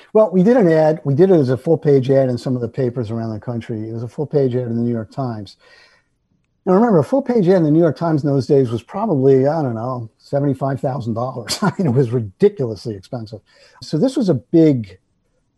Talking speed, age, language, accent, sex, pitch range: 230 wpm, 50-69, English, American, male, 120-150 Hz